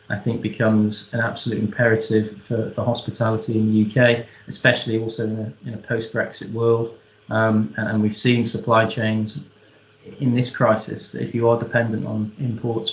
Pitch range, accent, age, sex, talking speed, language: 110-120 Hz, British, 20-39, male, 160 wpm, English